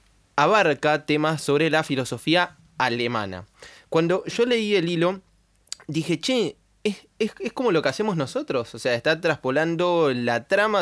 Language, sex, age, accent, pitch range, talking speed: Spanish, male, 20-39, Argentinian, 115-165 Hz, 150 wpm